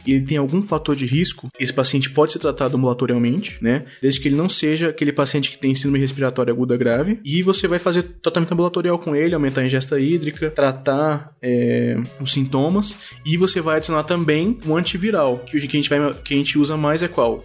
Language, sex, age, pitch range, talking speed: Portuguese, male, 20-39, 130-160 Hz, 210 wpm